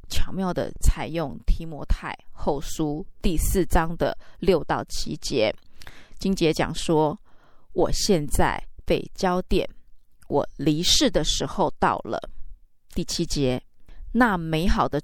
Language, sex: Chinese, female